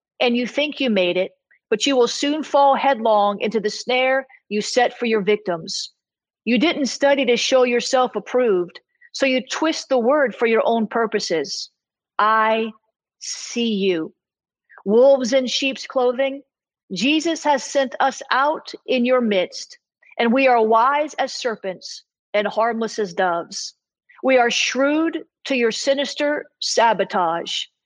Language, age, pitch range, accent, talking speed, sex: English, 40-59, 225-275 Hz, American, 145 wpm, female